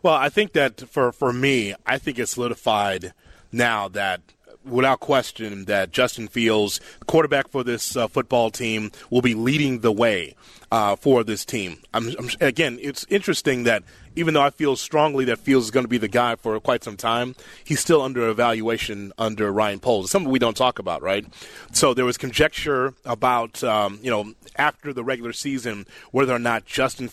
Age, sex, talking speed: 30-49, male, 185 wpm